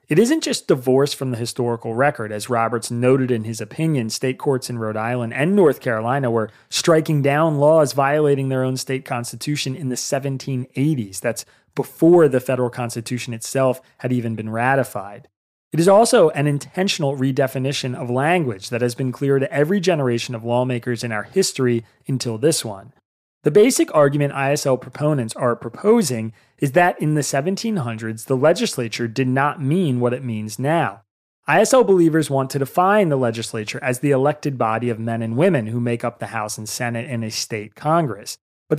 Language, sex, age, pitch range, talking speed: English, male, 30-49, 120-145 Hz, 180 wpm